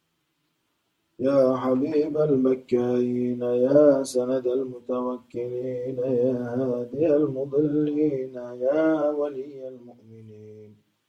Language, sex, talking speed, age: Turkish, male, 65 wpm, 30-49